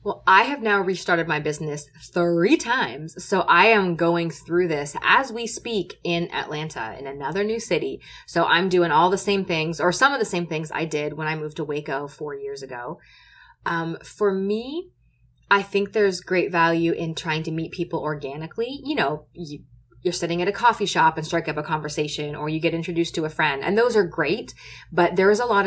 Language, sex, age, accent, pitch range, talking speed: English, female, 20-39, American, 150-180 Hz, 215 wpm